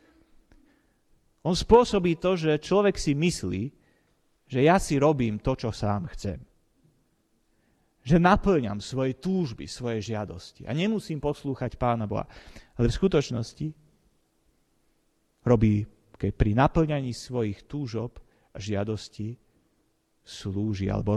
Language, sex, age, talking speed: Slovak, male, 30-49, 110 wpm